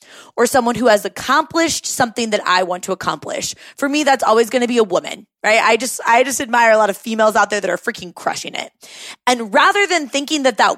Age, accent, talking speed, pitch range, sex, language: 20-39, American, 240 wpm, 215-280 Hz, female, English